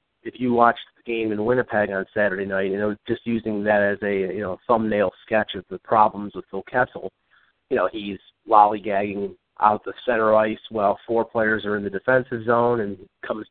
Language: English